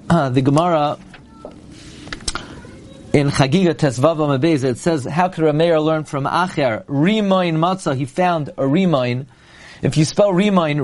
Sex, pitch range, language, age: male, 145-175 Hz, English, 40-59